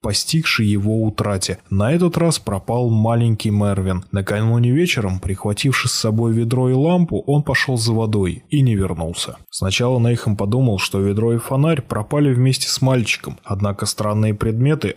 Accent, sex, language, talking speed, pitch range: native, male, Russian, 150 wpm, 100-125 Hz